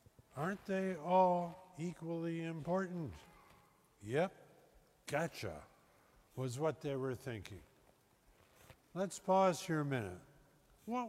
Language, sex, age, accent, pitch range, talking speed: English, male, 50-69, American, 145-190 Hz, 95 wpm